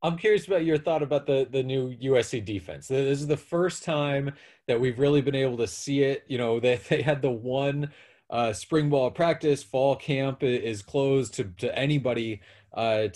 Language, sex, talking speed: English, male, 195 wpm